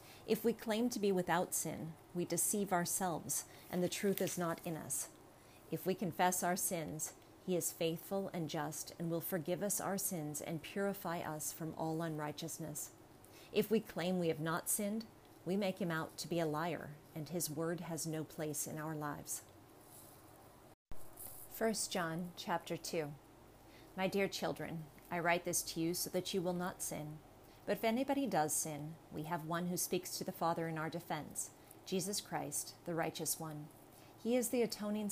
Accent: American